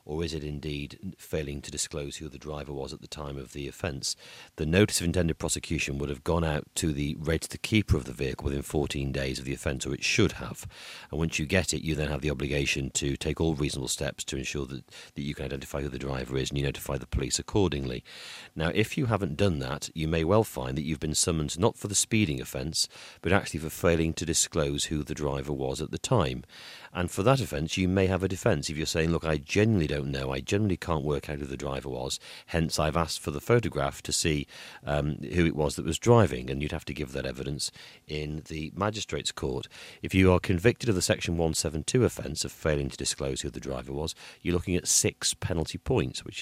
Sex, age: male, 40-59